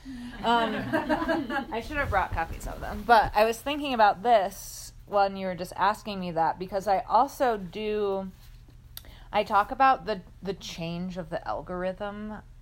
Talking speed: 160 wpm